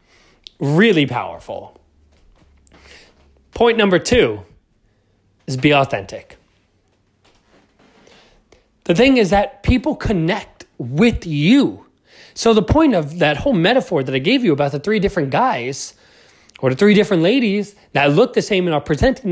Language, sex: English, male